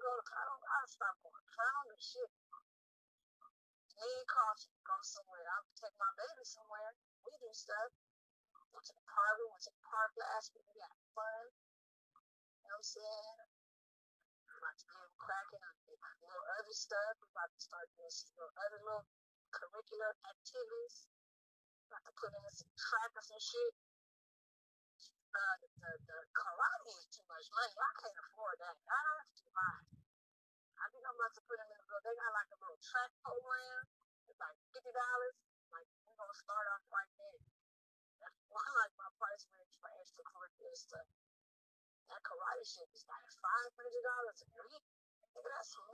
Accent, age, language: American, 50-69, English